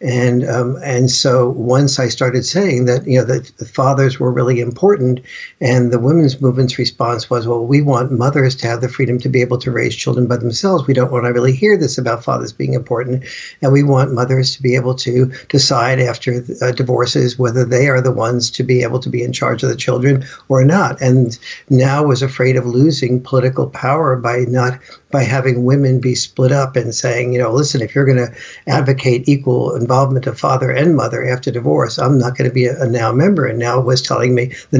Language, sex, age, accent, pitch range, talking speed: English, male, 50-69, American, 125-135 Hz, 225 wpm